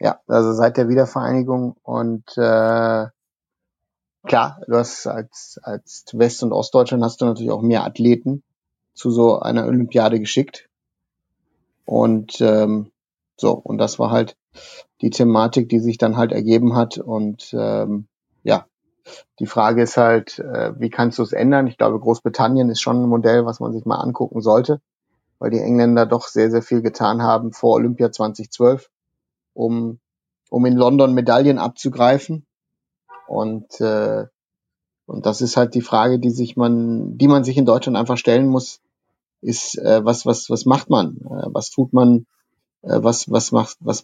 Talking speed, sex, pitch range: 165 wpm, male, 115-125 Hz